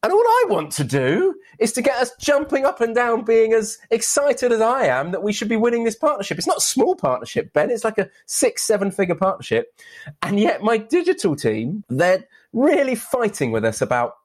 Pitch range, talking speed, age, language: 140-215 Hz, 210 wpm, 30-49, English